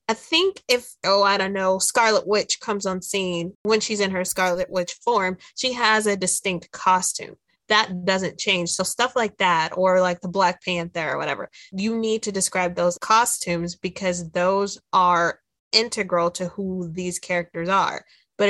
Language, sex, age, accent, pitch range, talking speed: English, female, 20-39, American, 180-220 Hz, 175 wpm